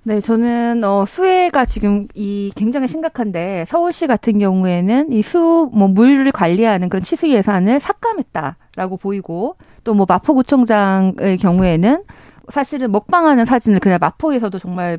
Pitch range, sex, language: 195-280 Hz, female, Korean